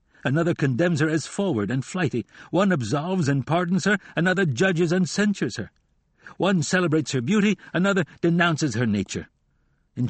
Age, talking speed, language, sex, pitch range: 60-79, 155 wpm, English, male, 135-185 Hz